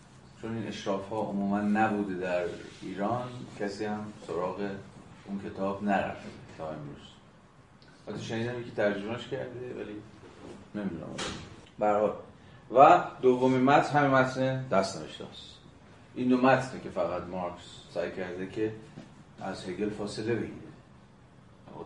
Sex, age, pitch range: male, 30-49, 95-115 Hz